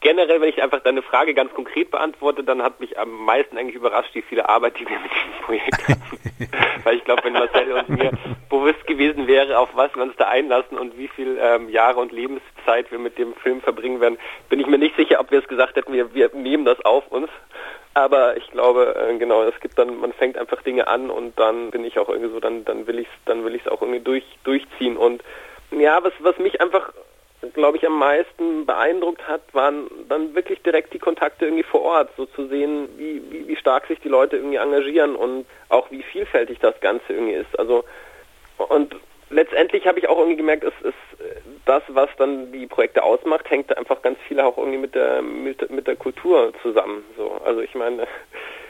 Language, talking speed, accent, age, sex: German, 215 wpm, German, 40-59, male